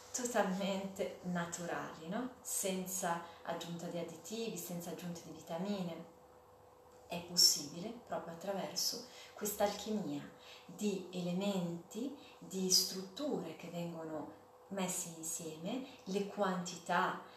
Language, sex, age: Italian, female, 30-49